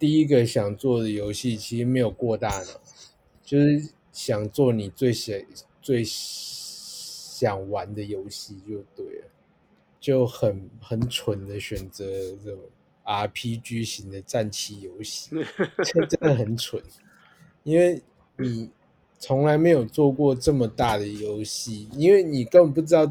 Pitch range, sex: 105-130 Hz, male